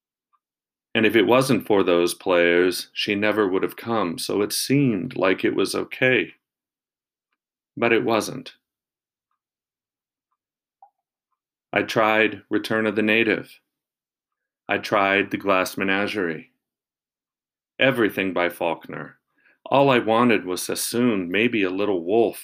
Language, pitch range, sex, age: English, 100-120 Hz, male, 40-59